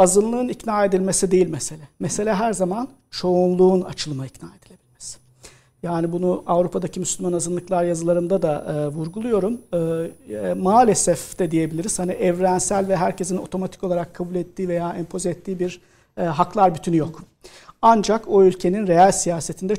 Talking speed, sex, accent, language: 130 wpm, male, native, Turkish